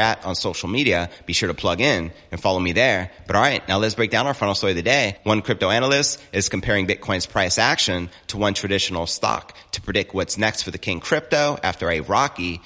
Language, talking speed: English, 230 wpm